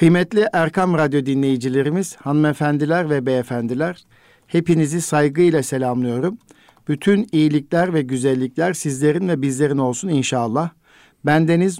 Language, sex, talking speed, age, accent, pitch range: Turkish, male, 100 wpm, 60-79, native, 130-155 Hz